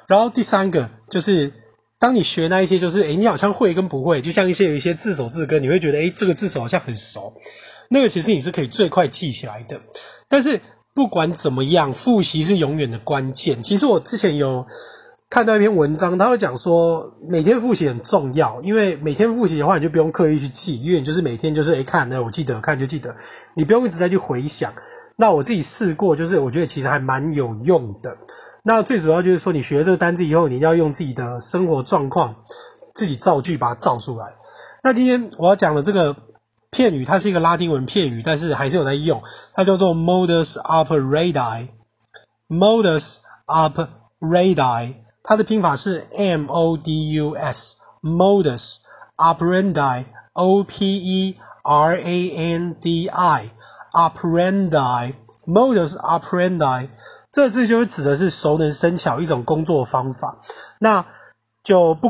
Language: Chinese